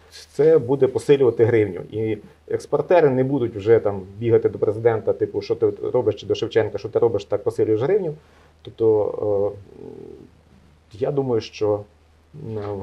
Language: Ukrainian